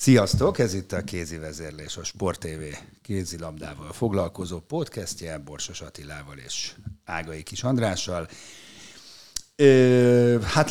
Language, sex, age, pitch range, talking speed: Hungarian, male, 50-69, 85-110 Hz, 110 wpm